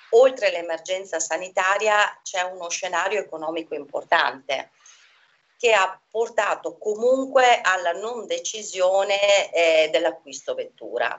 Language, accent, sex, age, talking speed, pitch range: Italian, native, female, 40-59, 95 wpm, 165-220 Hz